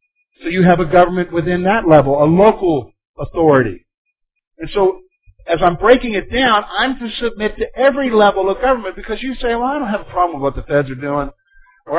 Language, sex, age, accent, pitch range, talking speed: English, male, 50-69, American, 170-260 Hz, 210 wpm